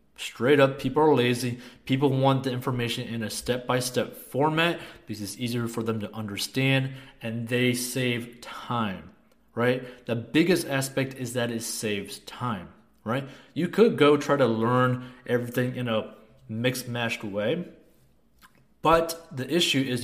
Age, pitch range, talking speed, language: 20-39, 115-140 Hz, 150 wpm, English